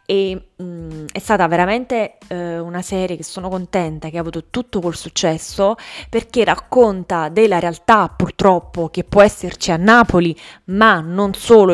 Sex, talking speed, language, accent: female, 155 wpm, Italian, native